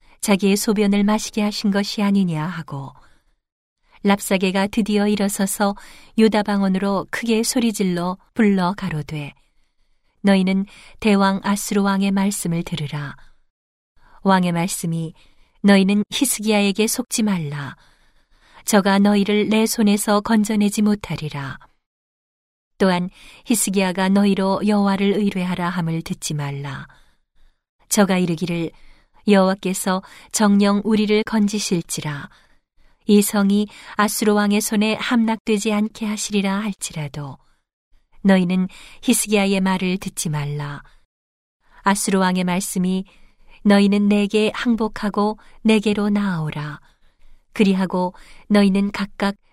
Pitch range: 175-210 Hz